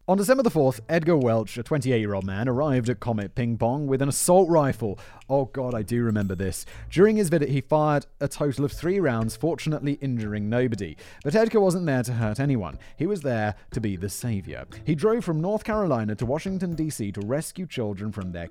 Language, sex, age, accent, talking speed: English, male, 30-49, British, 215 wpm